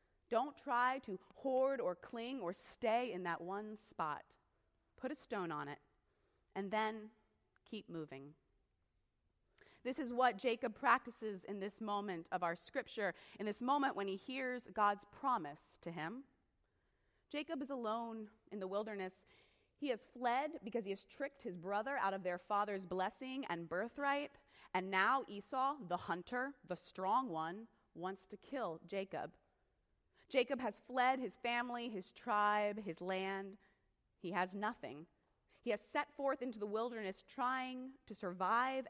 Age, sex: 30-49, female